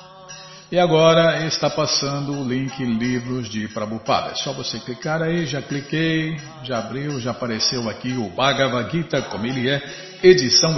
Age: 50-69